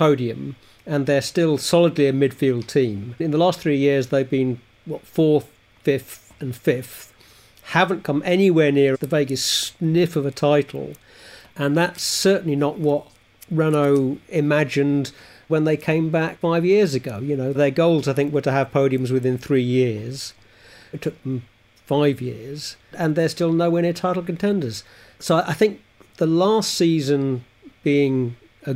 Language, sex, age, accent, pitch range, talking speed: English, male, 50-69, British, 130-165 Hz, 160 wpm